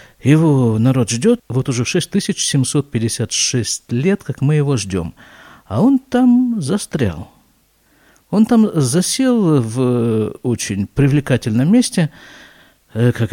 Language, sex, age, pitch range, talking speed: Russian, male, 50-69, 120-180 Hz, 105 wpm